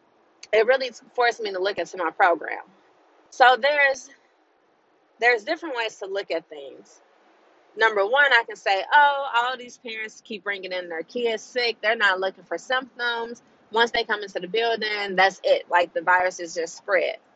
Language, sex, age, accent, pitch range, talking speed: English, female, 20-39, American, 180-245 Hz, 180 wpm